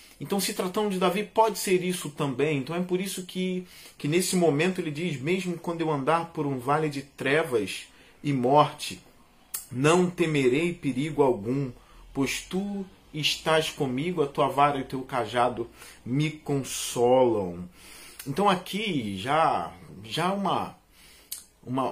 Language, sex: Portuguese, male